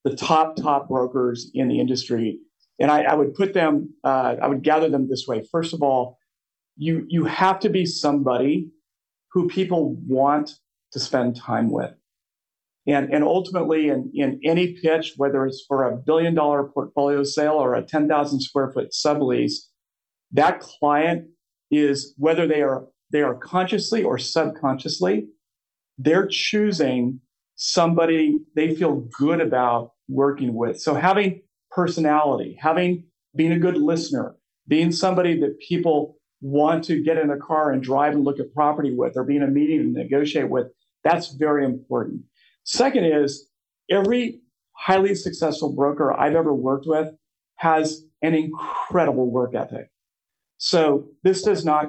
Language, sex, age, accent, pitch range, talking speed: English, male, 50-69, American, 140-165 Hz, 155 wpm